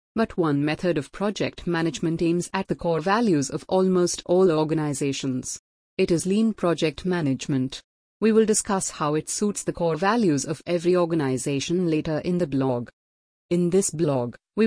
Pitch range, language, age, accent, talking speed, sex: 150-190 Hz, English, 30-49, Indian, 165 wpm, female